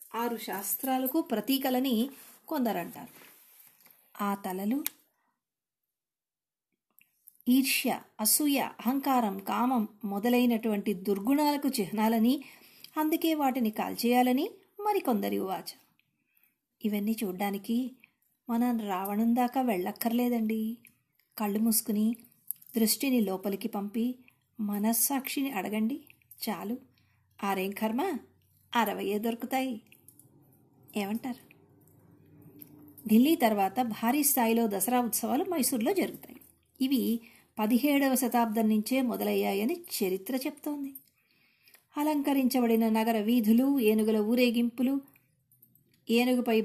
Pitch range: 210-260 Hz